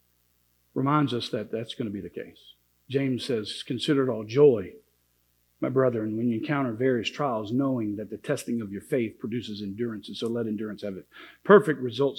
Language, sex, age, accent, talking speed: English, male, 50-69, American, 190 wpm